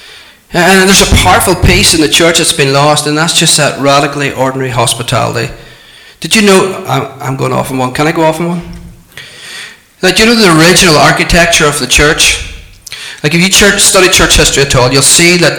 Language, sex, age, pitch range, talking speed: English, male, 30-49, 130-160 Hz, 210 wpm